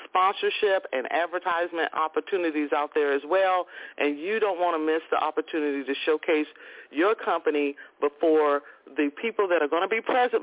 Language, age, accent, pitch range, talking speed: English, 40-59, American, 150-250 Hz, 165 wpm